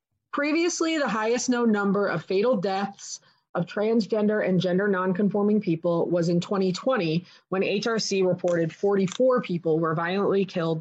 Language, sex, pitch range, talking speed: English, female, 190-240 Hz, 140 wpm